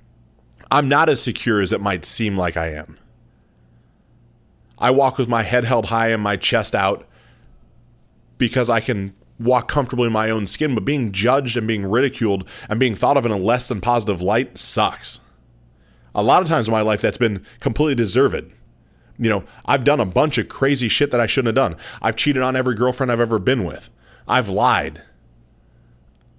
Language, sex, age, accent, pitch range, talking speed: English, male, 30-49, American, 100-135 Hz, 195 wpm